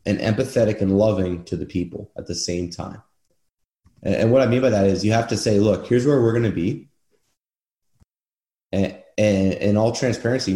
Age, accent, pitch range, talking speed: 30-49, American, 95-115 Hz, 205 wpm